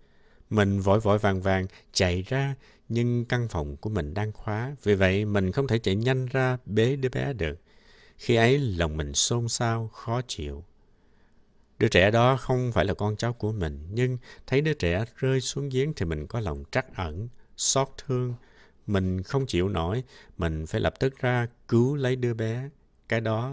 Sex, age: male, 60-79